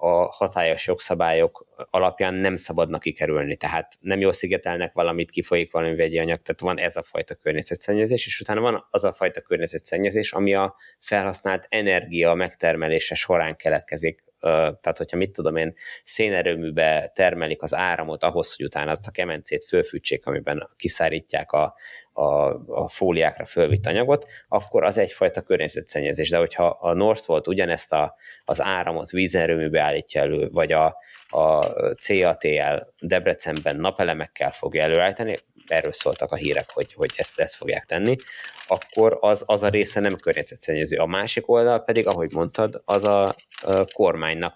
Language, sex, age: Hungarian, male, 20-39